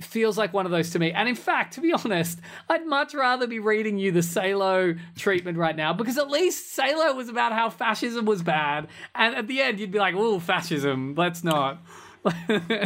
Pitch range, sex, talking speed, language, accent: 165-230 Hz, male, 210 wpm, English, Australian